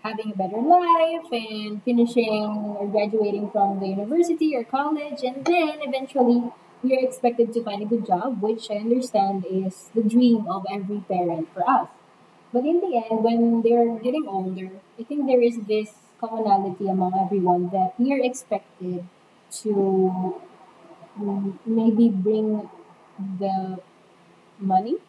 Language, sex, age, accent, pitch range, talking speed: English, female, 20-39, Filipino, 200-255 Hz, 140 wpm